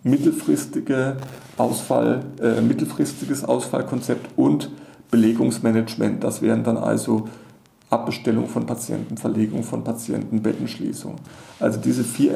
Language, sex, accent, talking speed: German, male, German, 85 wpm